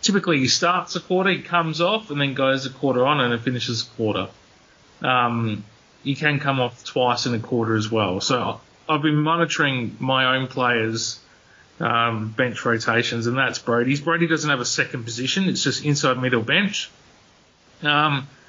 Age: 30-49